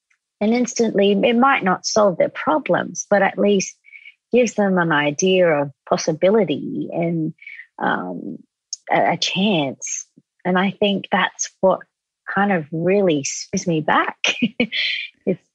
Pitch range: 160-185 Hz